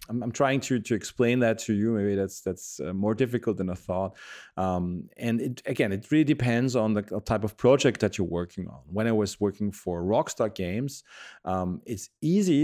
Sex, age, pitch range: male, 30-49, 95-120 Hz